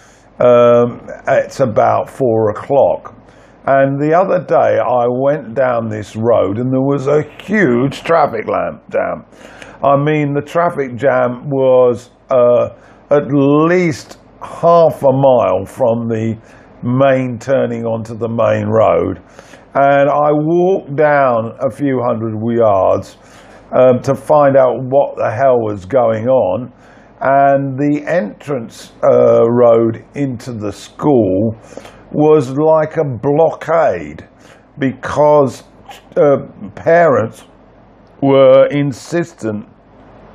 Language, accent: English, British